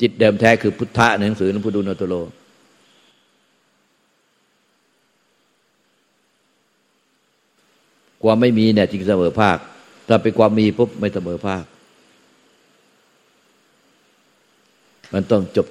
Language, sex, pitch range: Thai, male, 90-105 Hz